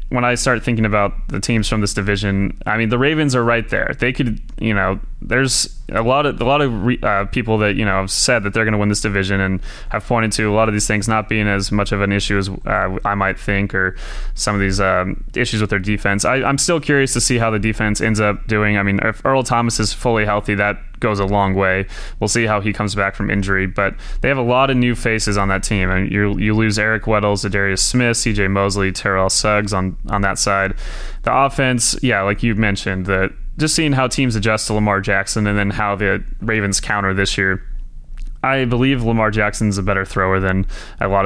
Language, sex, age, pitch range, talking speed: English, male, 20-39, 100-115 Hz, 245 wpm